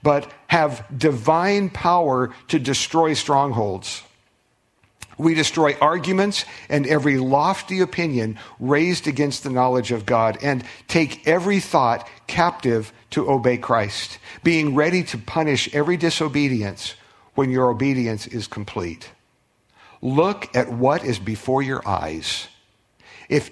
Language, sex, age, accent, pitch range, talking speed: English, male, 50-69, American, 125-165 Hz, 120 wpm